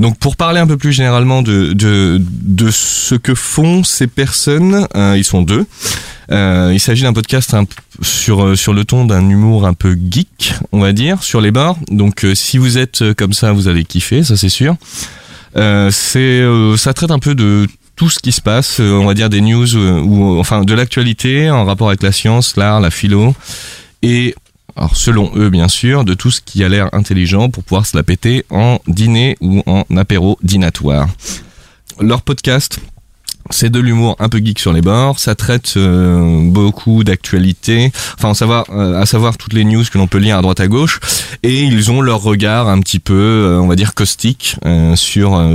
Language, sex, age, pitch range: French, male, 20-39, 95-120 Hz